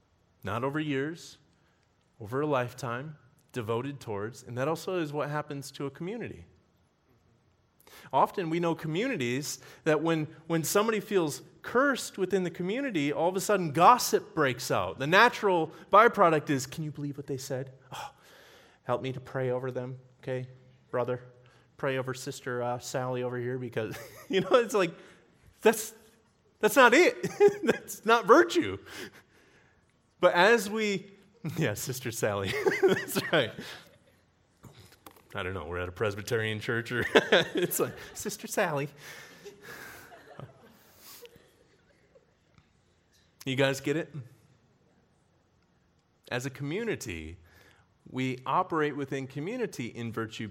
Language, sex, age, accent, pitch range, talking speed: English, male, 30-49, American, 120-170 Hz, 130 wpm